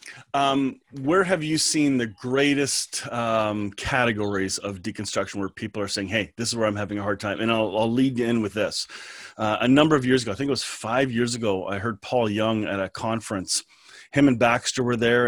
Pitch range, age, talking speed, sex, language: 110-135 Hz, 30-49, 225 wpm, male, English